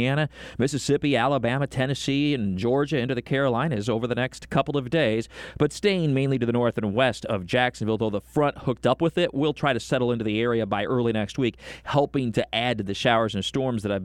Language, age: English, 40-59